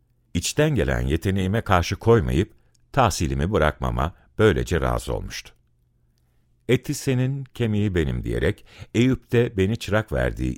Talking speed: 110 wpm